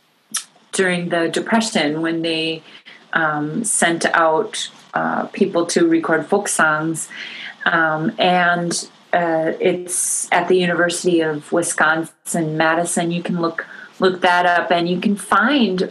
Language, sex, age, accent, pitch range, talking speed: English, female, 30-49, American, 170-210 Hz, 130 wpm